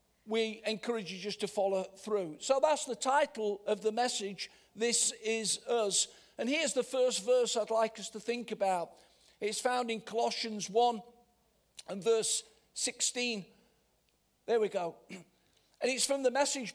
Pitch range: 210-260 Hz